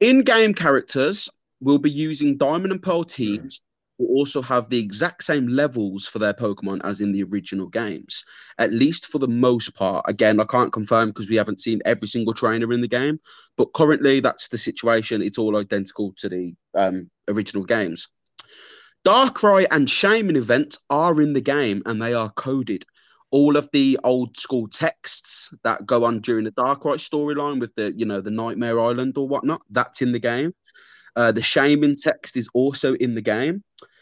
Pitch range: 110-140 Hz